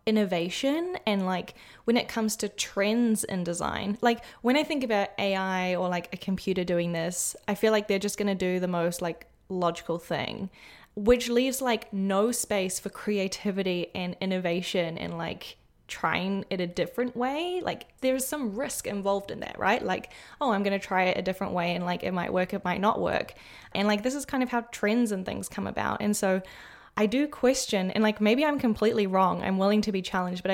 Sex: female